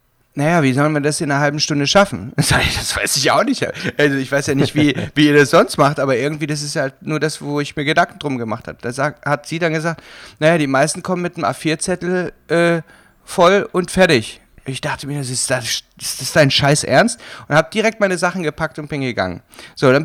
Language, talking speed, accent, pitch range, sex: German, 225 wpm, German, 135-175 Hz, male